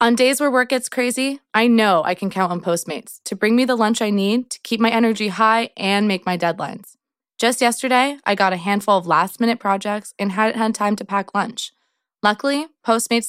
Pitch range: 190-240 Hz